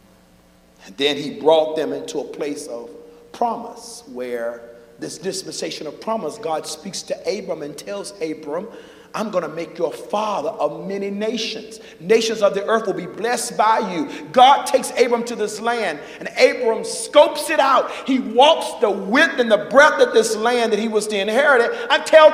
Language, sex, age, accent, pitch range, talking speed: English, male, 50-69, American, 165-265 Hz, 185 wpm